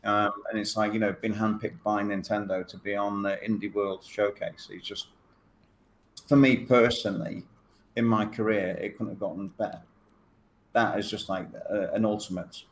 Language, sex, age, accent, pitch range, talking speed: Hindi, male, 40-59, British, 95-110 Hz, 180 wpm